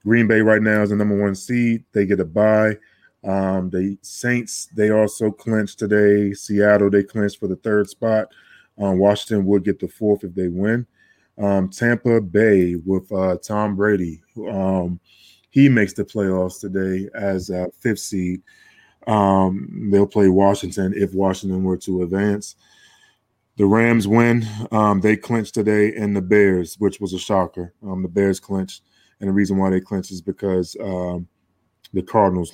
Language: English